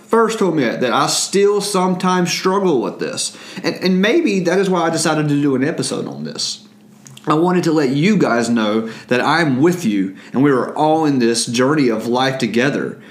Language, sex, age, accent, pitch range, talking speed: English, male, 30-49, American, 125-185 Hz, 210 wpm